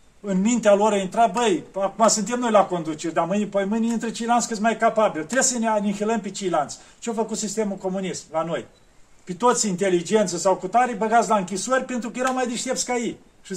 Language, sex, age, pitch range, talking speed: Romanian, male, 40-59, 200-235 Hz, 215 wpm